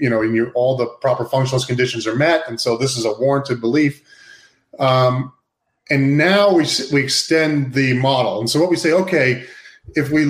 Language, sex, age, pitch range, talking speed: English, male, 30-49, 125-160 Hz, 200 wpm